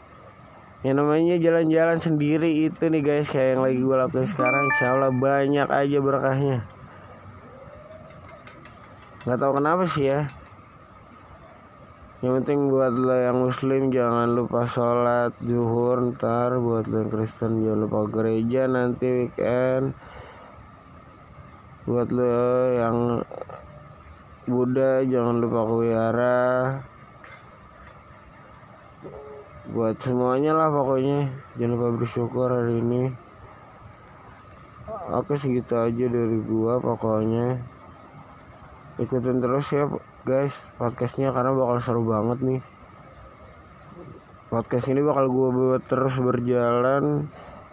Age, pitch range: 20-39, 115-130 Hz